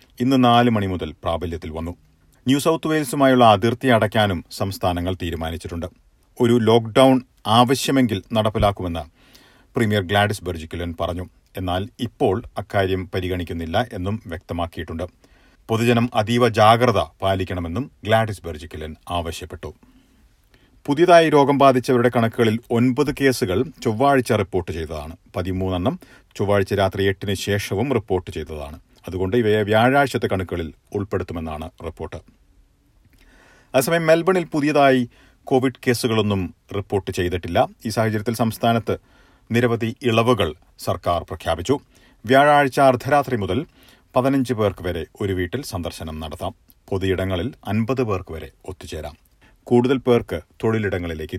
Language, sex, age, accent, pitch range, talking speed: Malayalam, male, 40-59, native, 90-125 Hz, 100 wpm